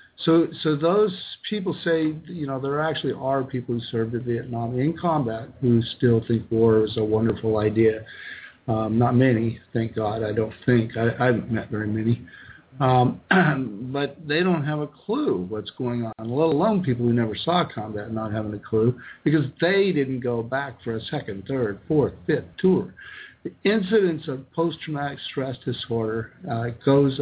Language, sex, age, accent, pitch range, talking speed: English, male, 50-69, American, 115-140 Hz, 175 wpm